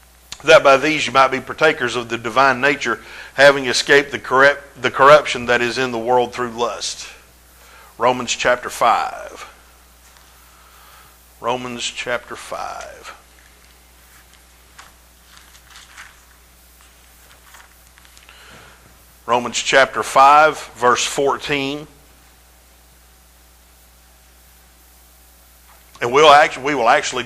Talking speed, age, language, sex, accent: 90 wpm, 50-69, English, male, American